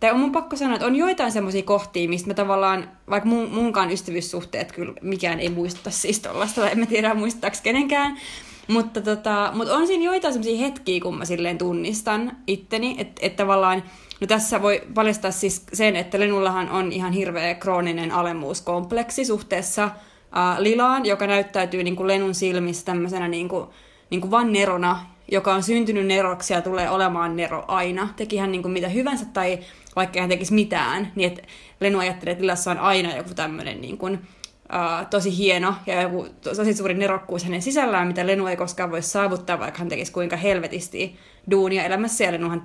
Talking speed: 170 wpm